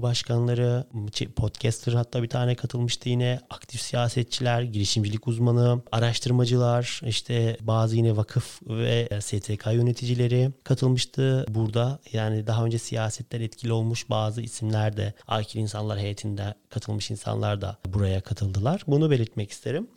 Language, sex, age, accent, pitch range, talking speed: Turkish, male, 30-49, native, 115-125 Hz, 125 wpm